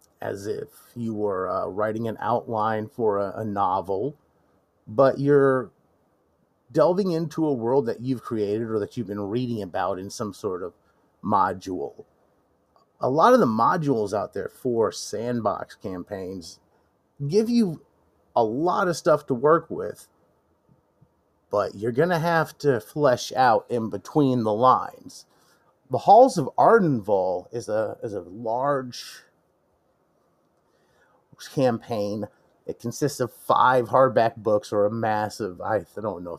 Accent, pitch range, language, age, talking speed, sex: American, 105-145 Hz, English, 30-49, 135 wpm, male